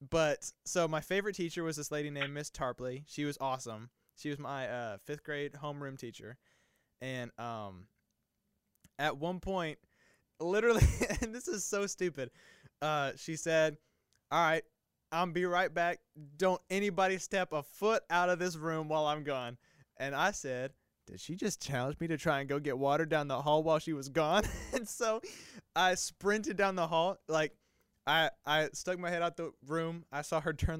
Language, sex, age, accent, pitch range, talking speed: English, male, 20-39, American, 145-180 Hz, 185 wpm